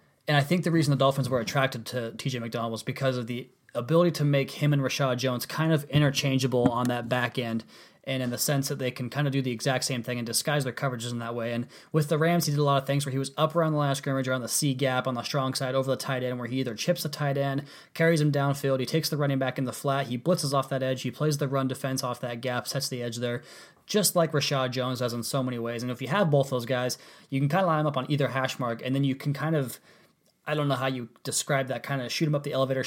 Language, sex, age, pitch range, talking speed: English, male, 20-39, 125-145 Hz, 300 wpm